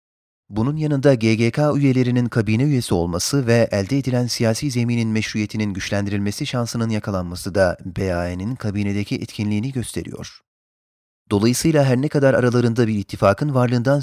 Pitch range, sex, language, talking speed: 100-125 Hz, male, Turkish, 125 wpm